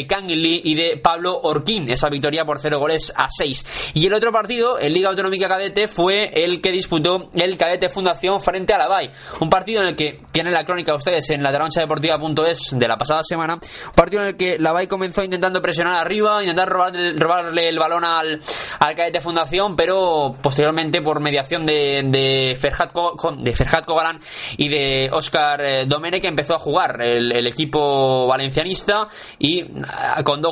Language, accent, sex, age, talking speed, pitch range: Spanish, Spanish, male, 20-39, 175 wpm, 145-175 Hz